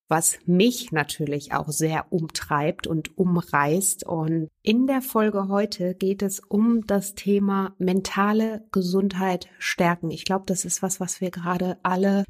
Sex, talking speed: female, 145 wpm